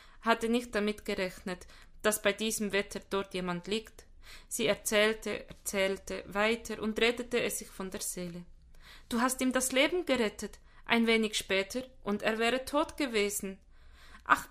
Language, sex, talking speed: German, female, 155 wpm